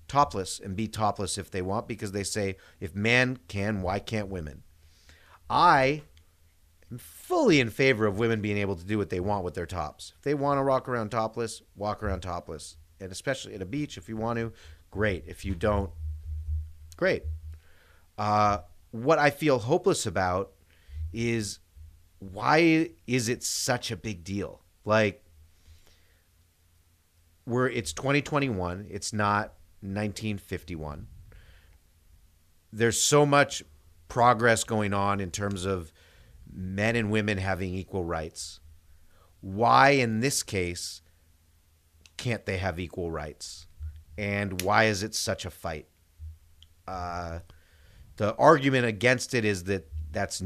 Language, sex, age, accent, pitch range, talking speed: English, male, 30-49, American, 80-110 Hz, 140 wpm